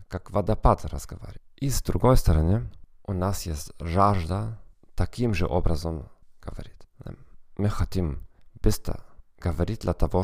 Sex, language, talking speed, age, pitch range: male, Russian, 125 wpm, 40-59, 85-100 Hz